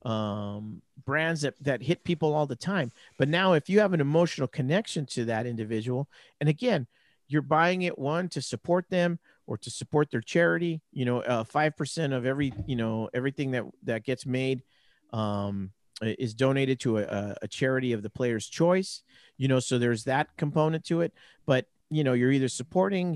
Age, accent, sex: 50-69, American, male